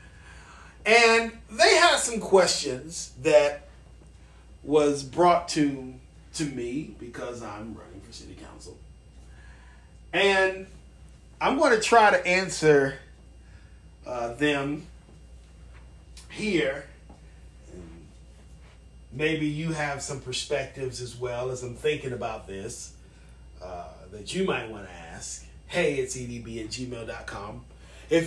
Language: English